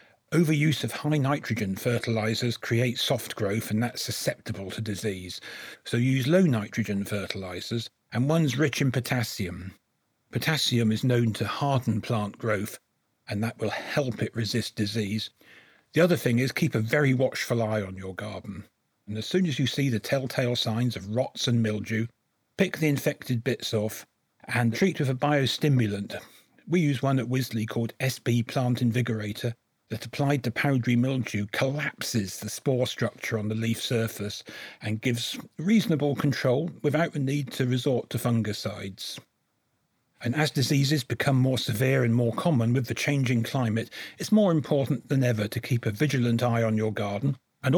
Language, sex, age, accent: English, male, 40-59, British